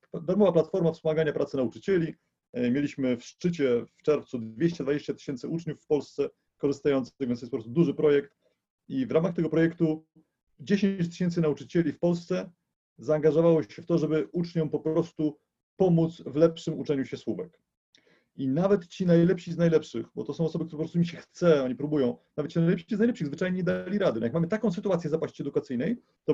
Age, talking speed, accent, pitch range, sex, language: 40-59, 185 wpm, native, 140-175 Hz, male, Polish